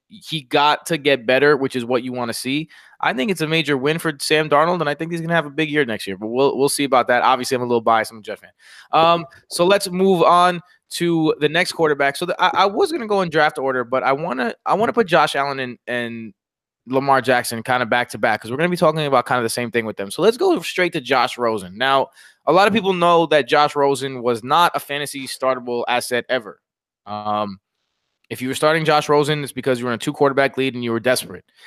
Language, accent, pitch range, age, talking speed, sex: English, American, 130-155 Hz, 20-39, 270 wpm, male